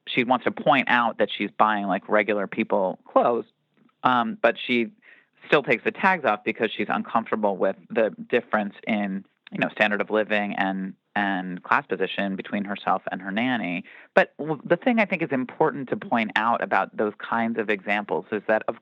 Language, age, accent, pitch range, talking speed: English, 30-49, American, 100-125 Hz, 190 wpm